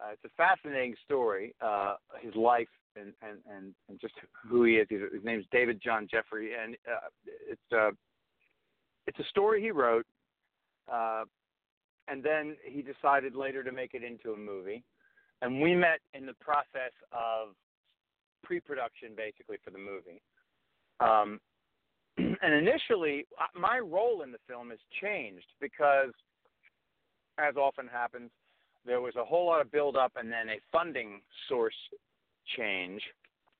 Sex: male